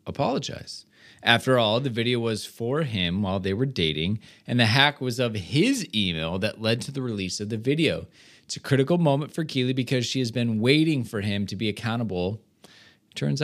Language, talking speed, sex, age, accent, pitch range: English, 195 wpm, male, 20-39, American, 100-135 Hz